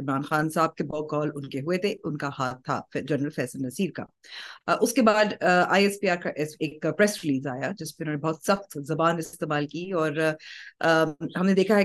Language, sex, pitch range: Urdu, female, 150-185 Hz